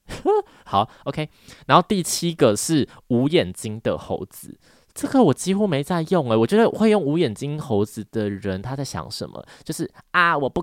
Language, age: Chinese, 20-39